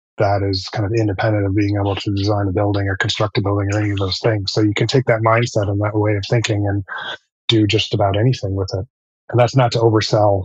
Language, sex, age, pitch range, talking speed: English, male, 20-39, 100-110 Hz, 255 wpm